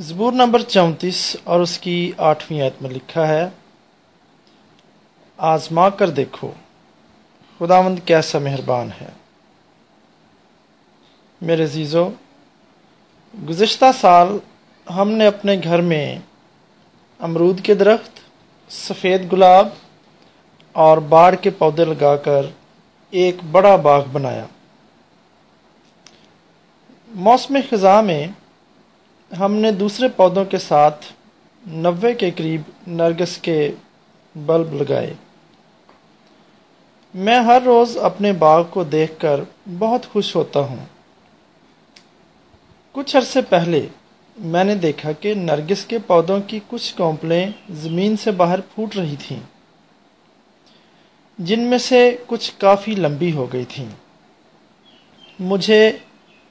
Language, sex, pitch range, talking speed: English, male, 160-210 Hz, 100 wpm